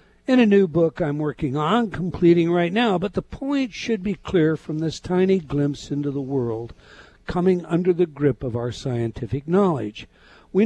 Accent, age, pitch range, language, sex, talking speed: American, 60-79, 125-185 Hz, English, male, 180 wpm